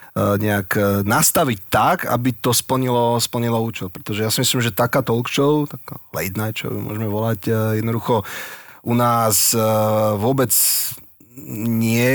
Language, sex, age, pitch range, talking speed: Slovak, male, 30-49, 110-125 Hz, 130 wpm